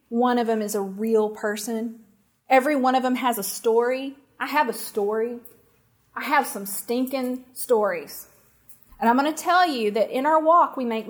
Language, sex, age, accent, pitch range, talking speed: English, female, 30-49, American, 230-285 Hz, 190 wpm